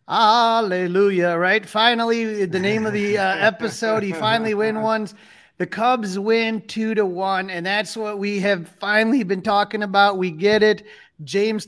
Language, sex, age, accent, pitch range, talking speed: English, male, 30-49, American, 175-220 Hz, 155 wpm